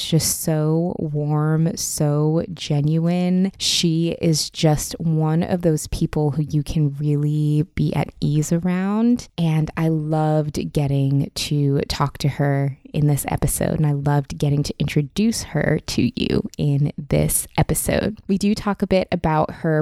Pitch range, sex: 150-175 Hz, female